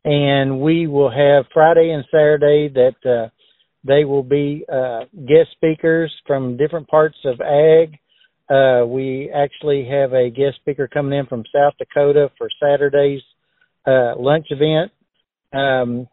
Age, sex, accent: 60-79, male, American